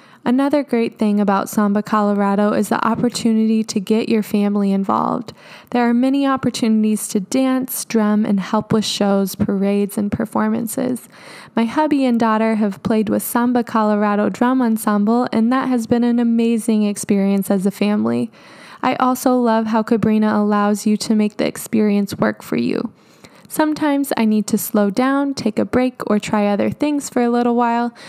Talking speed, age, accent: 170 wpm, 10-29, American